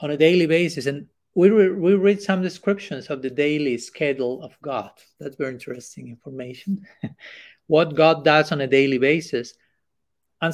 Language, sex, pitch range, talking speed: English, male, 140-180 Hz, 165 wpm